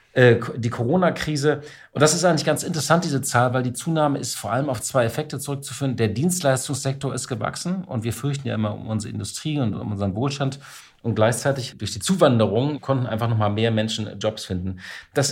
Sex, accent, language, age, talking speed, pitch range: male, German, German, 40-59, 190 wpm, 110-135 Hz